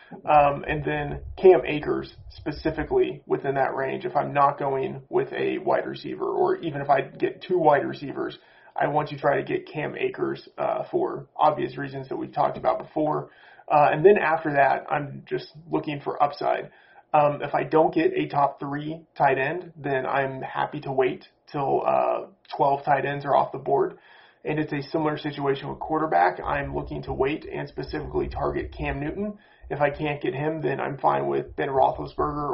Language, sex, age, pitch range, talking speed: English, male, 30-49, 140-200 Hz, 190 wpm